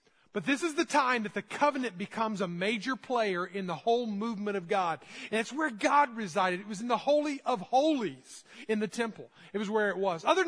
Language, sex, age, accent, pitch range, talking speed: English, male, 40-59, American, 195-250 Hz, 225 wpm